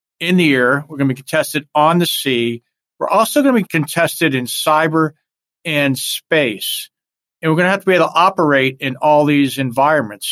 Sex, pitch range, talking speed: male, 135-160 Hz, 205 wpm